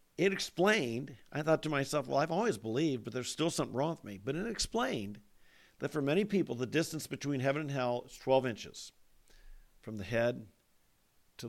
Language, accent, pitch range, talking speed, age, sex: English, American, 115-145 Hz, 195 wpm, 50-69, male